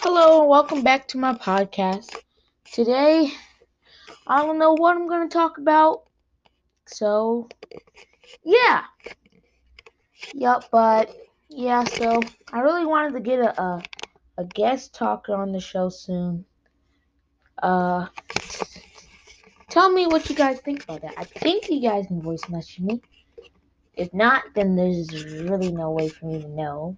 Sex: female